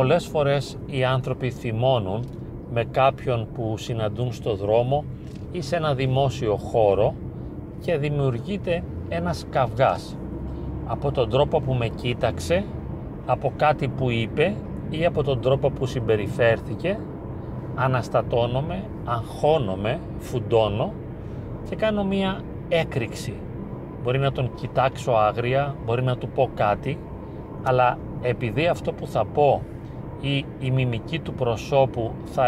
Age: 40-59